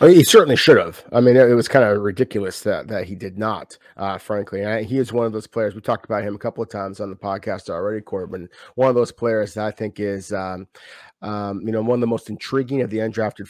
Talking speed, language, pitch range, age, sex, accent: 260 wpm, English, 110-130 Hz, 30-49, male, American